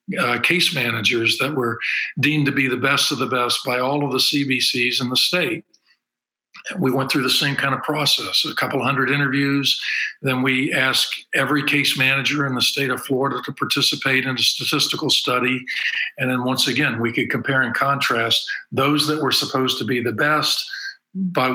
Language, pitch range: English, 125-145 Hz